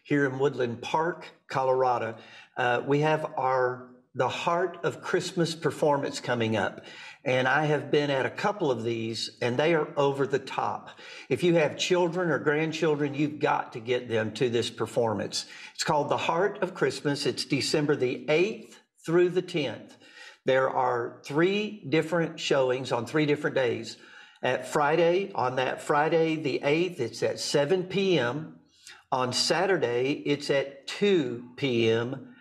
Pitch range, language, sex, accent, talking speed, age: 125-160 Hz, English, male, American, 155 wpm, 50-69